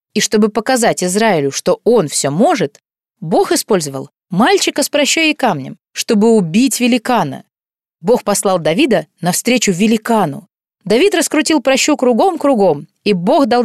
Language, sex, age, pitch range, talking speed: Russian, female, 20-39, 195-245 Hz, 130 wpm